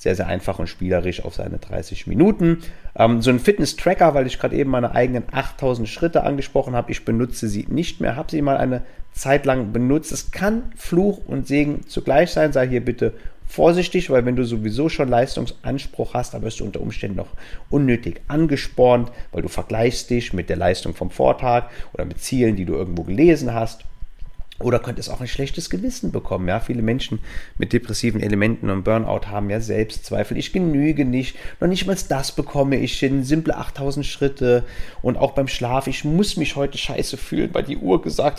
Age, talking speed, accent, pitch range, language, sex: 40-59, 190 wpm, German, 105-140 Hz, German, male